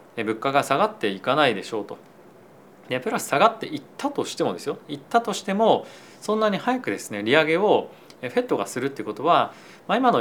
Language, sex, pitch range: Japanese, male, 115-180 Hz